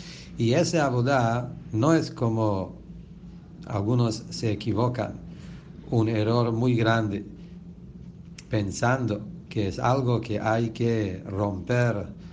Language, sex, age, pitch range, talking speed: English, male, 60-79, 105-135 Hz, 100 wpm